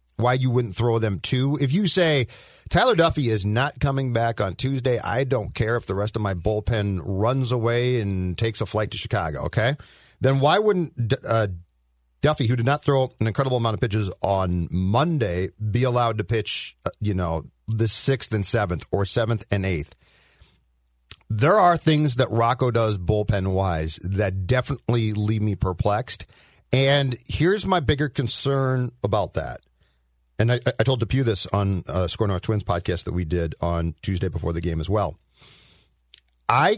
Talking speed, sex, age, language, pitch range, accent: 175 wpm, male, 40-59, English, 95-135 Hz, American